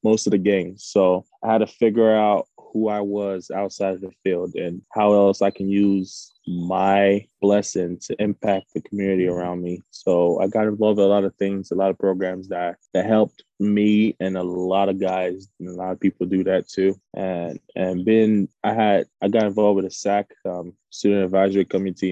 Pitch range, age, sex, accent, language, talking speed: 90-105 Hz, 20-39, male, American, English, 205 wpm